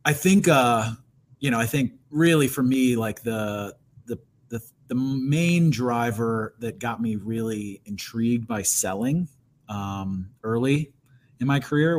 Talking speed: 145 wpm